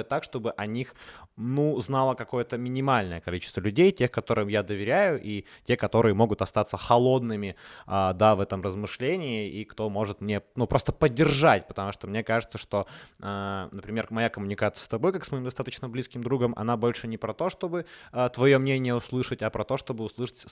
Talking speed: 185 wpm